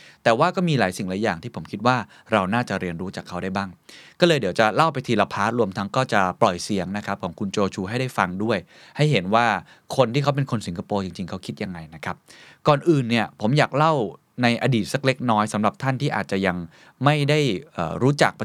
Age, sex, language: 20-39, male, Thai